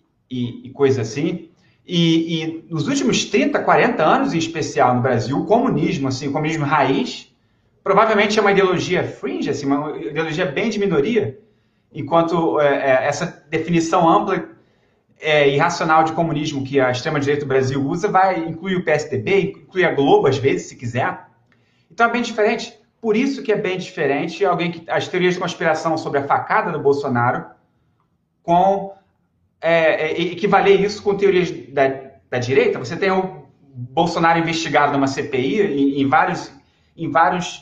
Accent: Brazilian